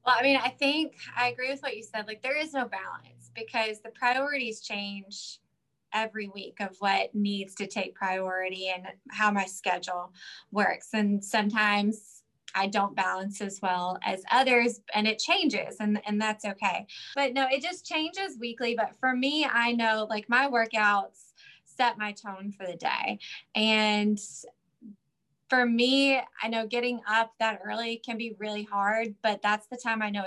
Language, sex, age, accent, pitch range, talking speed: English, female, 20-39, American, 200-245 Hz, 175 wpm